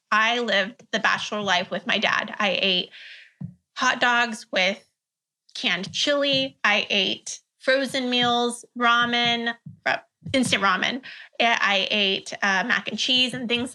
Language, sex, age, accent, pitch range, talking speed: English, female, 20-39, American, 200-240 Hz, 130 wpm